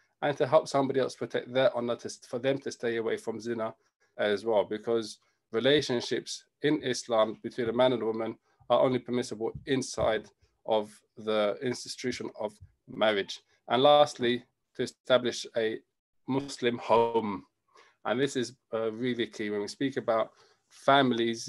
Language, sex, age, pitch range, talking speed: English, male, 20-39, 115-135 Hz, 155 wpm